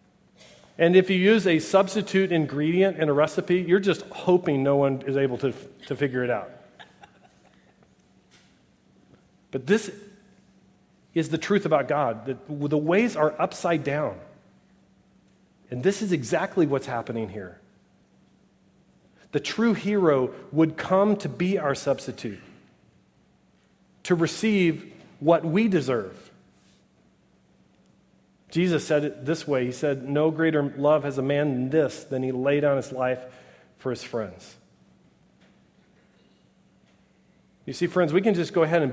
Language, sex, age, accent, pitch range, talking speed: English, male, 40-59, American, 135-185 Hz, 135 wpm